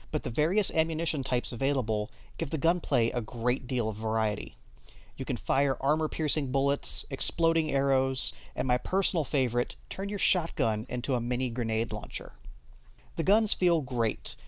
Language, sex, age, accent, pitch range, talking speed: English, male, 40-59, American, 120-165 Hz, 155 wpm